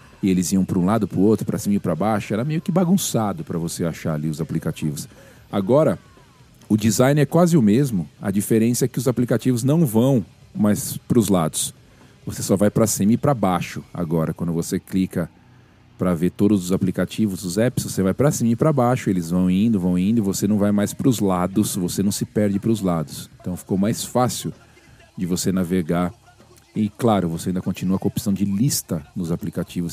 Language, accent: Portuguese, Brazilian